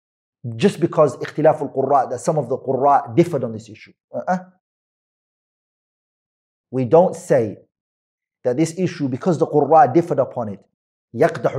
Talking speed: 140 wpm